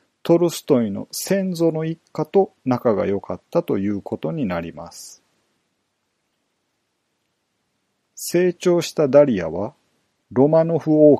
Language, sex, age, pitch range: Japanese, male, 40-59, 110-150 Hz